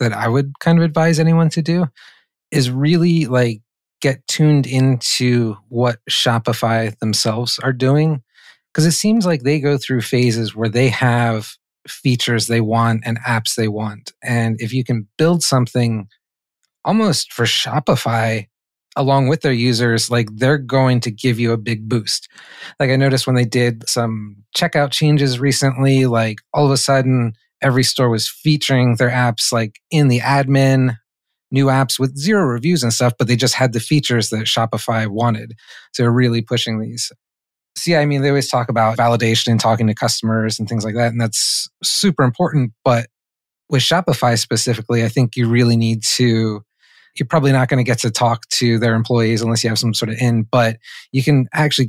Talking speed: 185 wpm